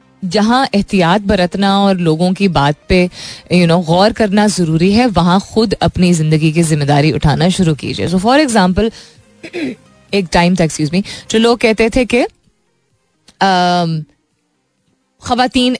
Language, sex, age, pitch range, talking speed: Hindi, female, 30-49, 165-210 Hz, 135 wpm